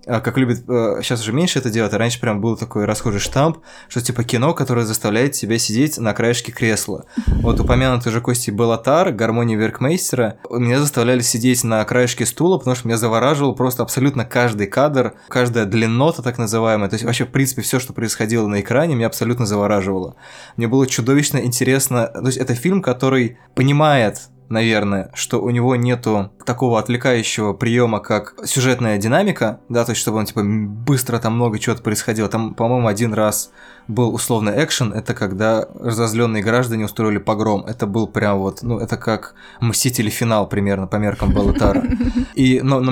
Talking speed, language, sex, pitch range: 170 wpm, Russian, male, 110-130 Hz